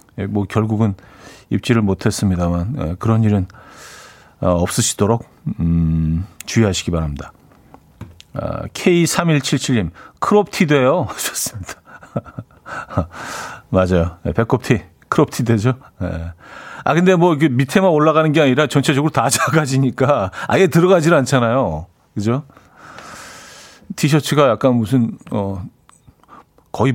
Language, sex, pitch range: Korean, male, 105-150 Hz